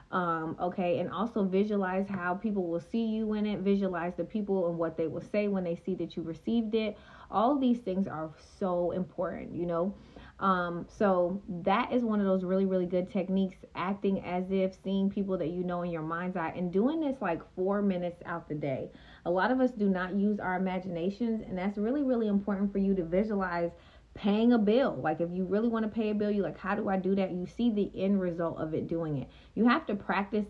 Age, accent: 30-49, American